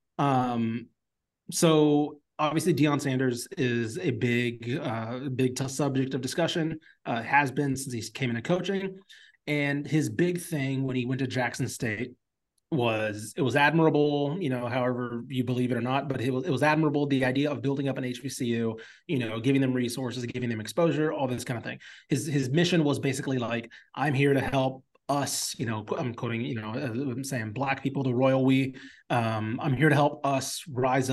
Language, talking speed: English, 195 wpm